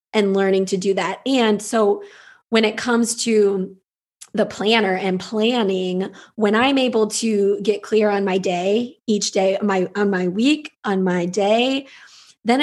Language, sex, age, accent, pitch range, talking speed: English, female, 20-39, American, 195-230 Hz, 160 wpm